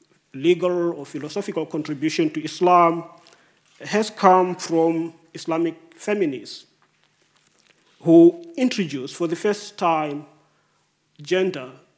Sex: male